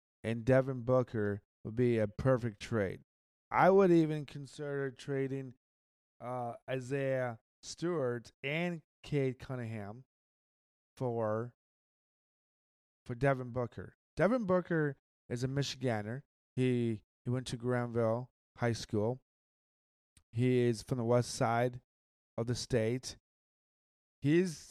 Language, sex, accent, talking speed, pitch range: English, male, American, 110 wpm, 110-140 Hz